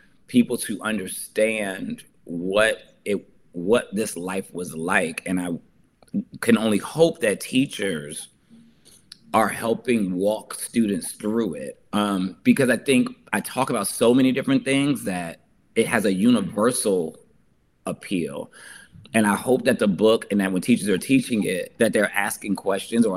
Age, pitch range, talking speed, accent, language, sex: 30-49, 95-135 Hz, 150 wpm, American, English, male